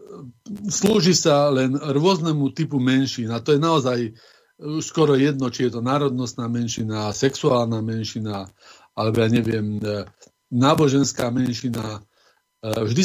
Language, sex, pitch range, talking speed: Slovak, male, 120-145 Hz, 110 wpm